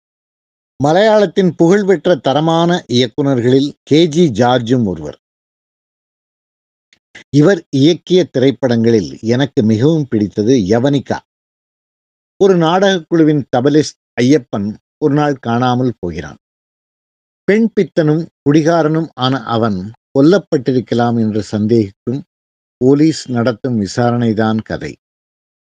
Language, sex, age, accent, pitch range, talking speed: Tamil, male, 50-69, native, 110-150 Hz, 80 wpm